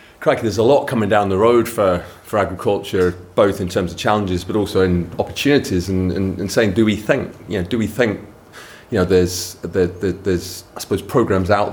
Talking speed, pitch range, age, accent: 225 wpm, 90-105 Hz, 30-49, British